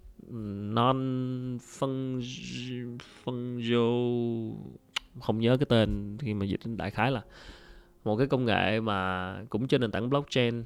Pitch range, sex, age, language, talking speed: 105-130 Hz, male, 20-39, Vietnamese, 140 wpm